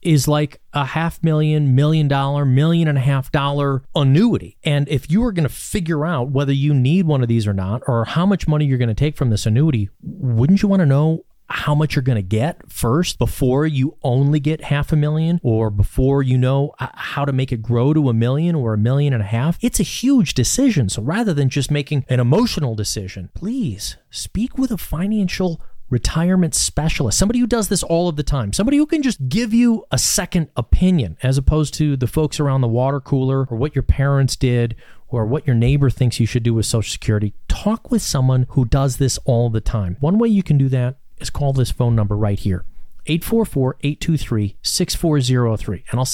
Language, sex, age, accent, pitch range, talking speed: English, male, 30-49, American, 120-160 Hz, 210 wpm